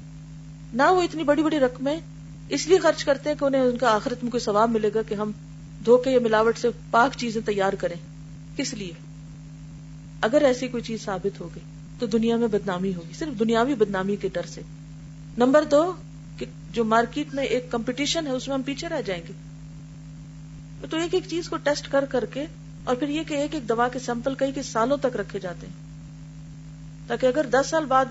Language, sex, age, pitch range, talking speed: Urdu, female, 40-59, 155-250 Hz, 160 wpm